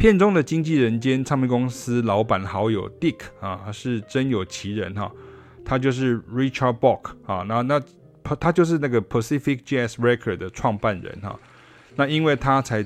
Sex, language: male, Chinese